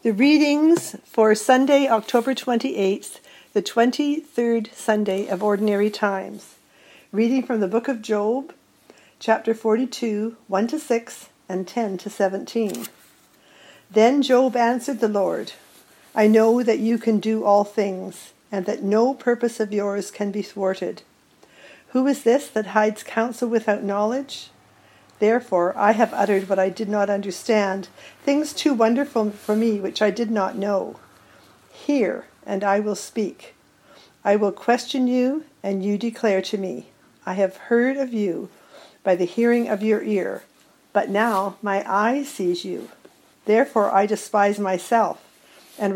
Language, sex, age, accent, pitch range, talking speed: English, female, 60-79, American, 200-240 Hz, 150 wpm